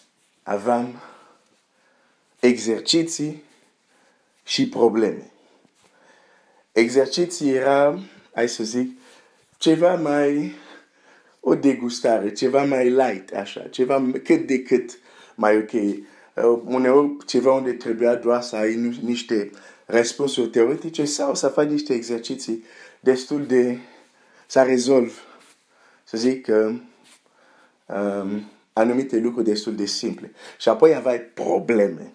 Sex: male